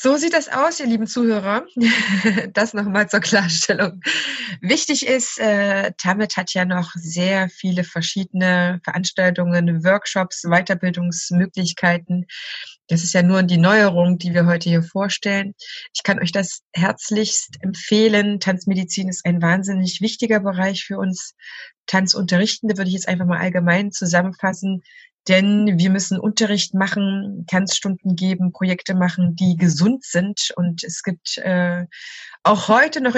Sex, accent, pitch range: female, German, 180-205 Hz